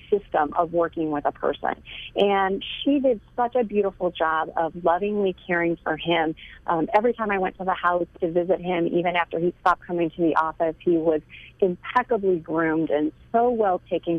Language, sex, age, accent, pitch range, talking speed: English, female, 40-59, American, 165-210 Hz, 190 wpm